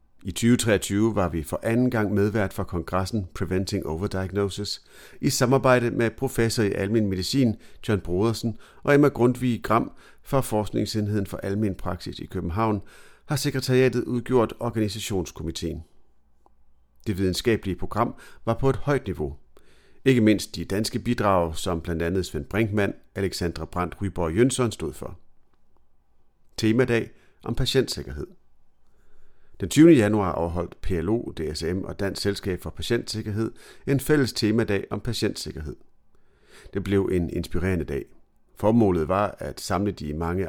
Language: Danish